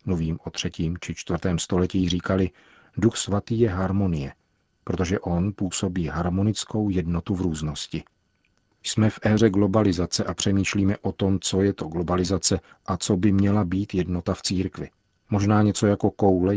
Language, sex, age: Czech, male, 40-59